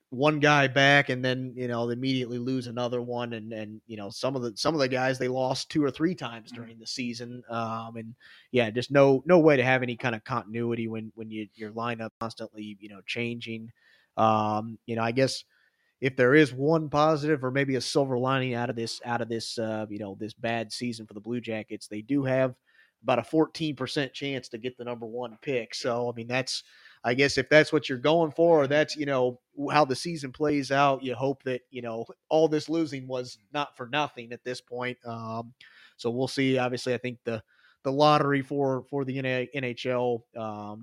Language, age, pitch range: English, 30-49, 115-135 Hz